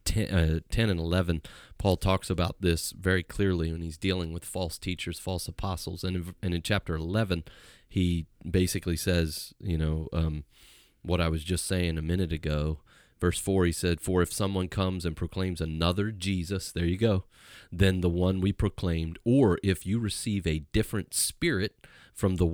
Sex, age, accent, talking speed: male, 30-49, American, 175 wpm